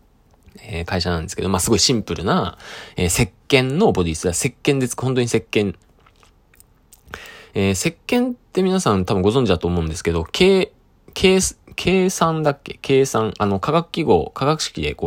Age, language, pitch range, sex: 20-39, Japanese, 90-140 Hz, male